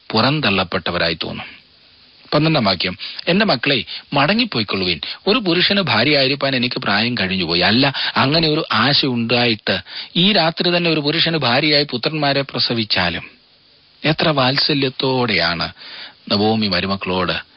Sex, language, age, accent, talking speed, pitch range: male, Malayalam, 40-59, native, 95 wpm, 115-160 Hz